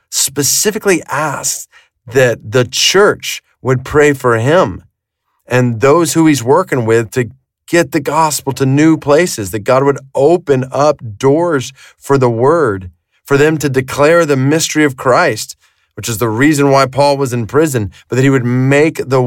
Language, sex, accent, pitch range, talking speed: English, male, American, 120-145 Hz, 170 wpm